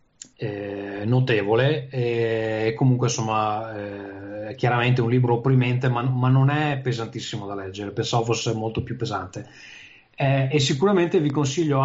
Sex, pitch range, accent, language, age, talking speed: male, 115-135 Hz, native, Italian, 30-49, 135 wpm